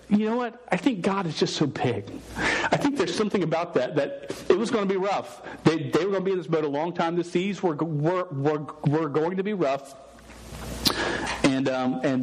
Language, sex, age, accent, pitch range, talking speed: English, male, 40-59, American, 135-180 Hz, 240 wpm